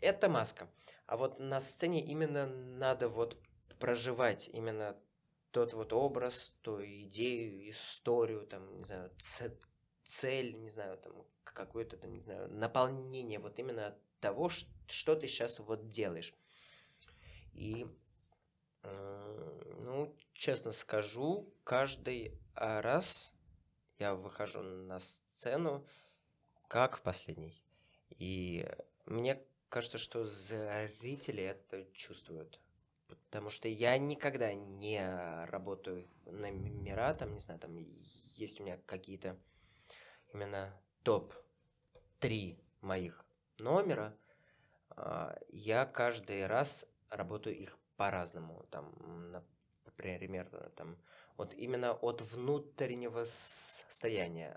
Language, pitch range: Russian, 95-125 Hz